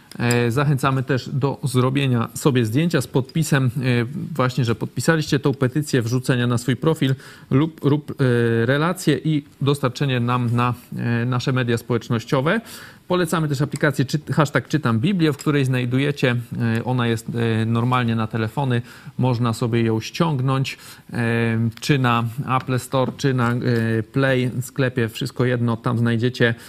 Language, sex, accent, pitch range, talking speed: Polish, male, native, 120-145 Hz, 125 wpm